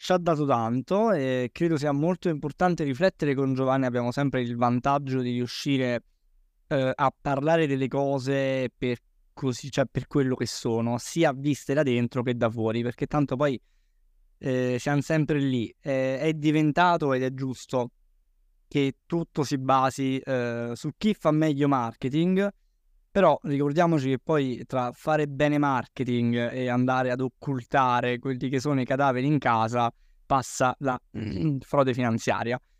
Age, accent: 20-39, native